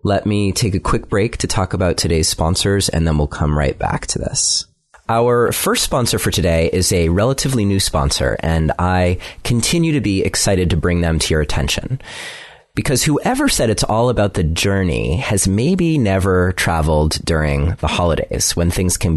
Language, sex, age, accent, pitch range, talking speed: English, male, 30-49, American, 85-115 Hz, 185 wpm